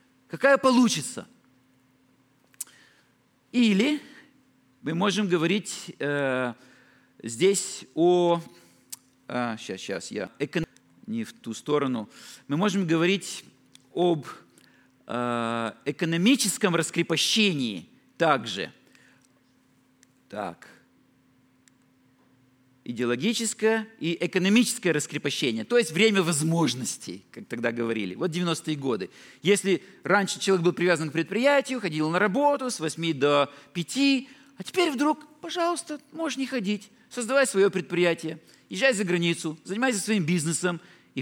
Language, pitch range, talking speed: Russian, 145-230 Hz, 105 wpm